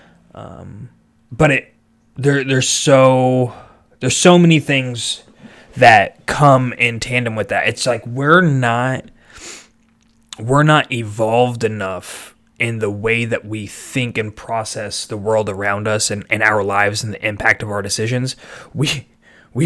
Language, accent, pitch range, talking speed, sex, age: English, American, 110-135 Hz, 145 wpm, male, 20-39